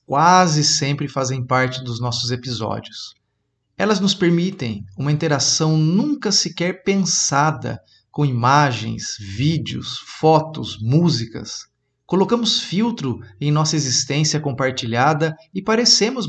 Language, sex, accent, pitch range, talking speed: Portuguese, male, Brazilian, 125-175 Hz, 105 wpm